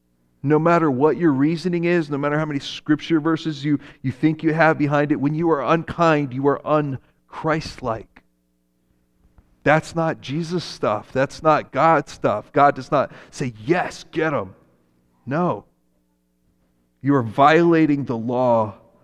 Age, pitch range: 40-59, 110-170 Hz